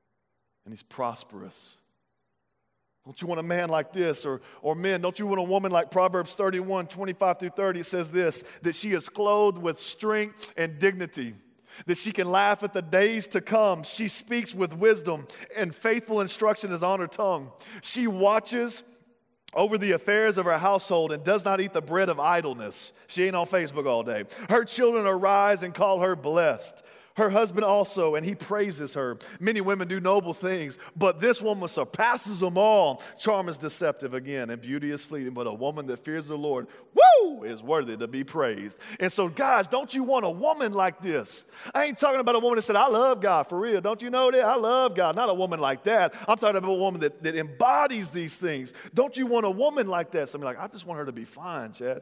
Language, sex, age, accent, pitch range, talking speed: English, male, 40-59, American, 160-215 Hz, 210 wpm